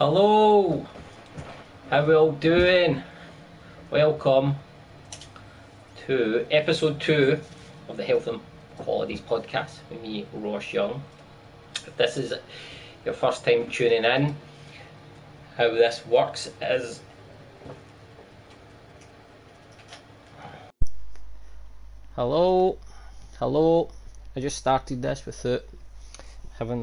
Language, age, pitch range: English, 20-39, 110-145 Hz